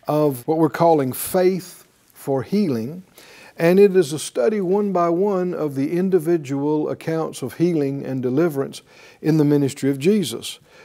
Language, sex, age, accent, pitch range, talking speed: English, male, 60-79, American, 135-175 Hz, 155 wpm